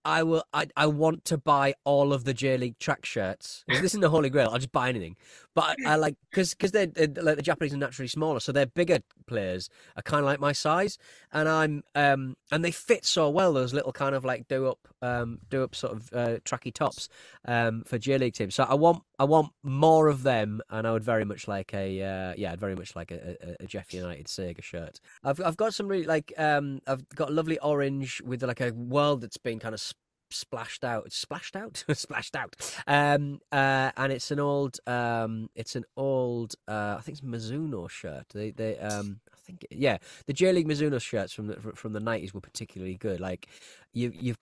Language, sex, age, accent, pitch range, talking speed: English, male, 30-49, British, 110-145 Hz, 225 wpm